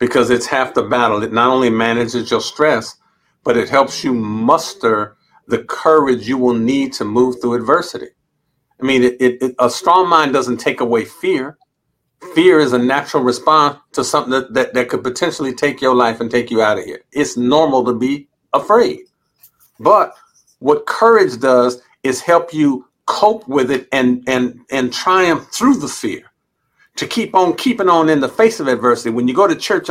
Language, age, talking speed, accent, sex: English, 50-69, 185 wpm, American, male